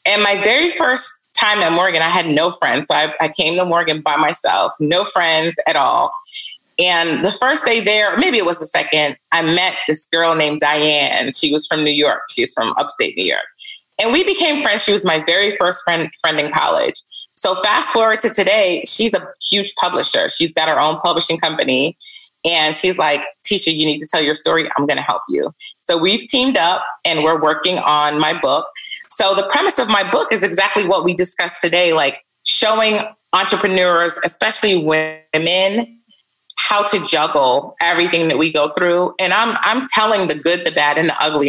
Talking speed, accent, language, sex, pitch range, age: 200 wpm, American, English, female, 155-210 Hz, 20-39